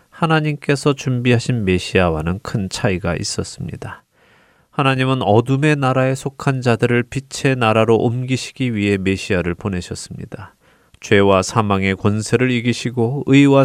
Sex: male